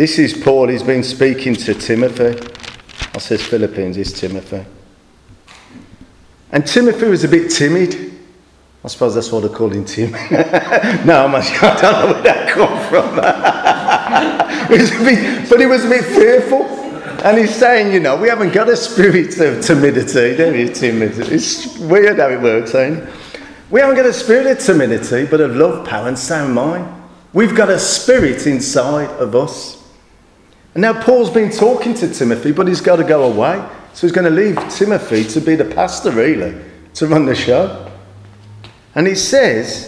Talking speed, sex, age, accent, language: 175 wpm, male, 40-59, British, English